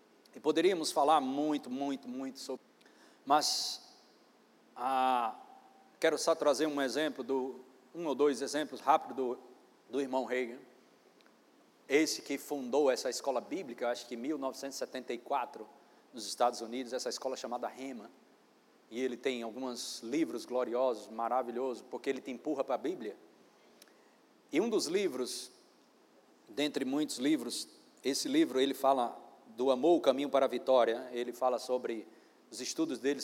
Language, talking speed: Portuguese, 140 wpm